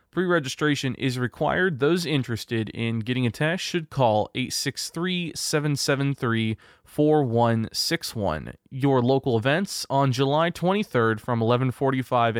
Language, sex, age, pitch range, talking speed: English, male, 20-39, 115-150 Hz, 95 wpm